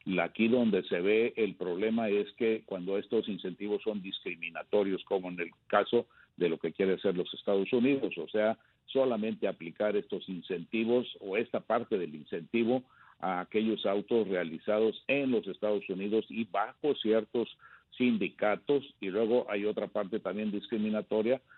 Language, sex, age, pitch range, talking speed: Spanish, male, 50-69, 95-115 Hz, 155 wpm